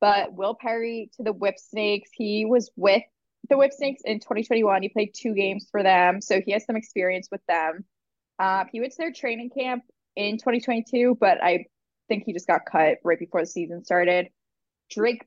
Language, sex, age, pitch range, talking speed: English, female, 20-39, 185-230 Hz, 195 wpm